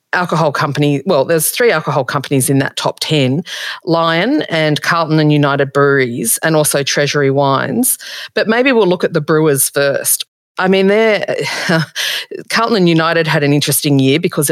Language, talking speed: English, 165 wpm